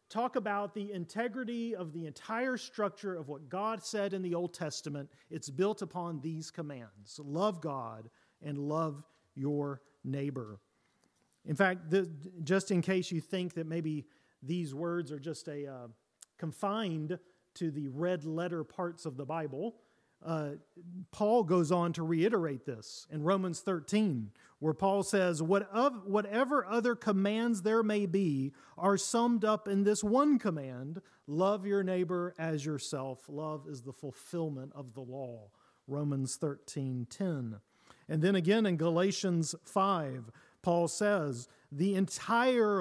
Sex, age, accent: male, 40-59, American